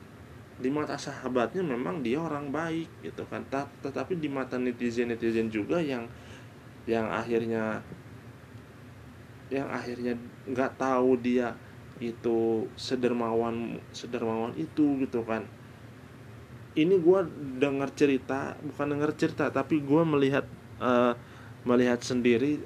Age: 20-39